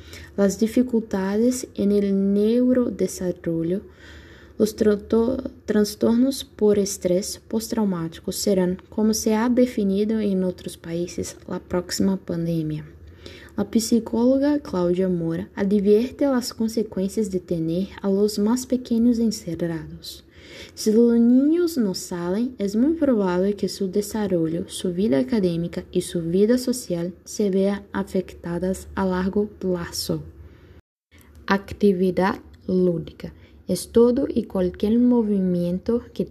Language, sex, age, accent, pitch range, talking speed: Spanish, female, 10-29, Brazilian, 180-225 Hz, 110 wpm